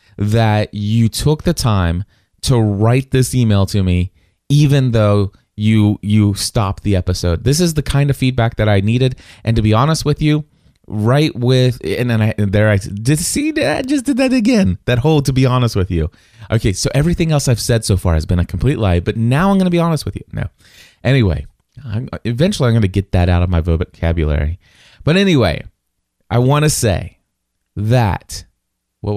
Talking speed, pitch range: 195 wpm, 95-130 Hz